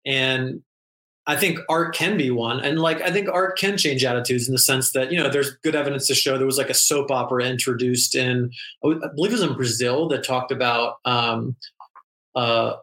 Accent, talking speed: American, 210 wpm